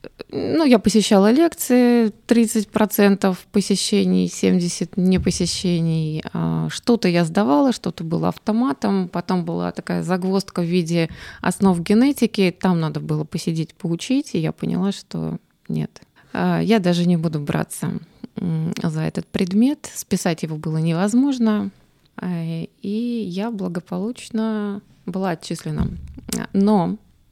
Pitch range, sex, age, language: 170-215 Hz, female, 20-39, Russian